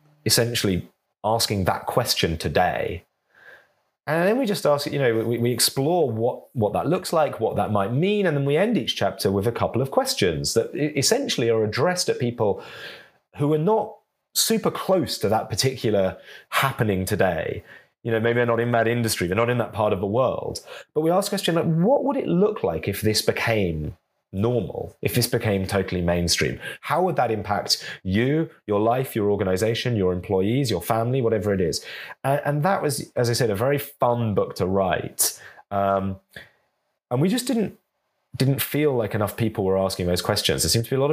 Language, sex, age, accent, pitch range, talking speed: English, male, 30-49, British, 100-145 Hz, 195 wpm